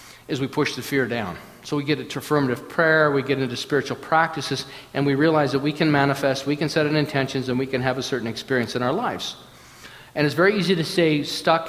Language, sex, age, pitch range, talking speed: English, male, 50-69, 120-145 Hz, 235 wpm